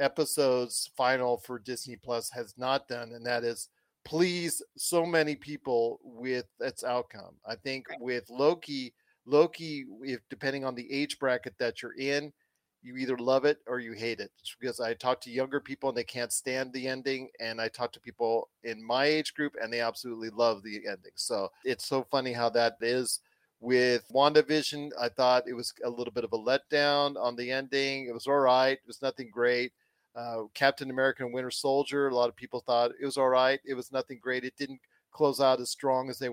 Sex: male